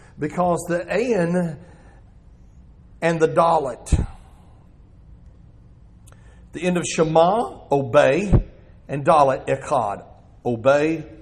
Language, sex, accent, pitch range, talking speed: English, male, American, 100-165 Hz, 80 wpm